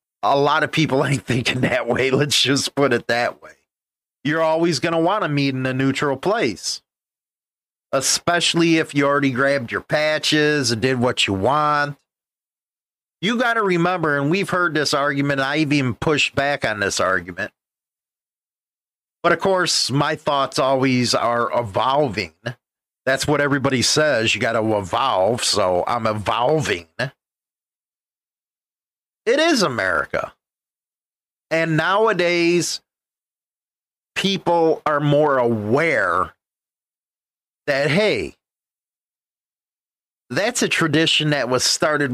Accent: American